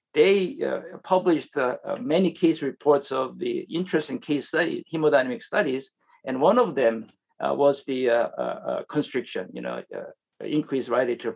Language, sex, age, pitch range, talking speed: English, male, 50-69, 130-175 Hz, 160 wpm